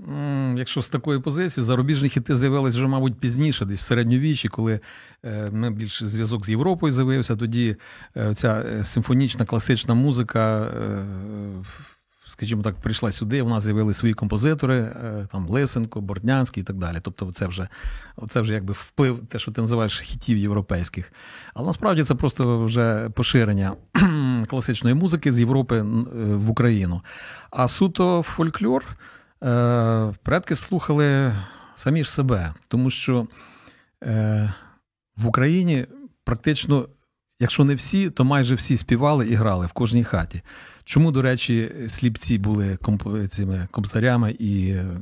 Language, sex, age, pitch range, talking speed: Ukrainian, male, 40-59, 110-135 Hz, 130 wpm